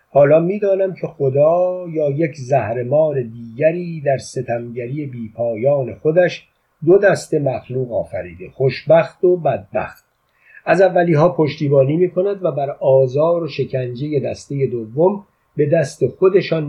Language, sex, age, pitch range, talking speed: Persian, male, 50-69, 130-165 Hz, 120 wpm